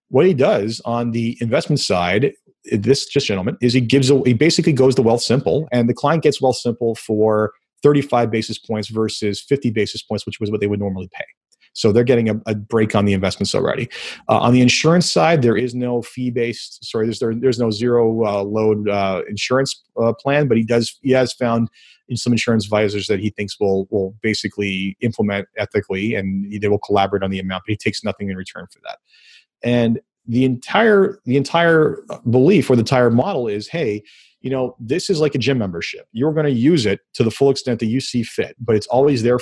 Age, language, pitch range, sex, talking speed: 30-49, English, 105-130 Hz, male, 215 wpm